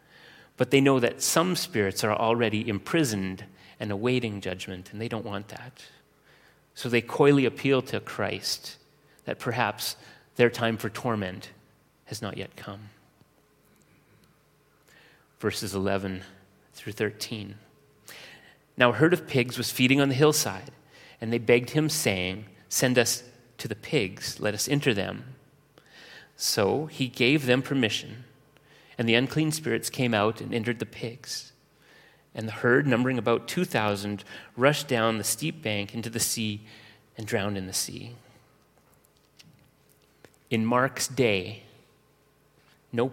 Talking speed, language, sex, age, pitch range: 140 wpm, English, male, 30-49, 105-135 Hz